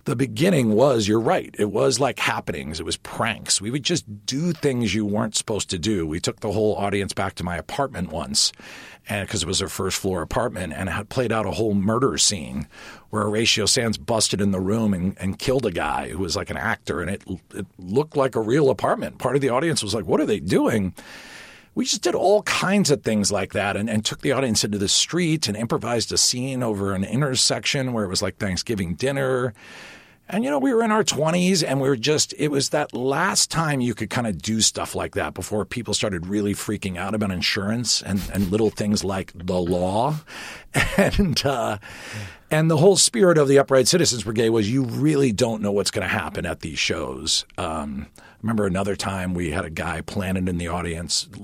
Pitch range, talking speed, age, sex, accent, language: 100-135 Hz, 220 wpm, 40-59, male, American, English